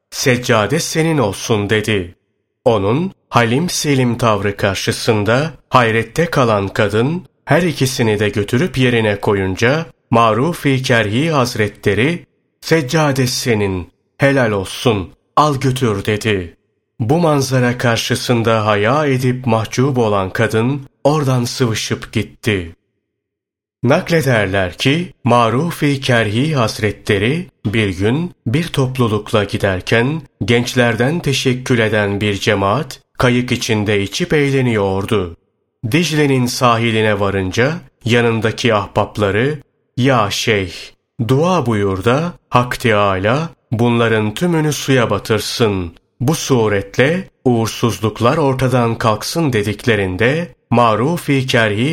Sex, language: male, Turkish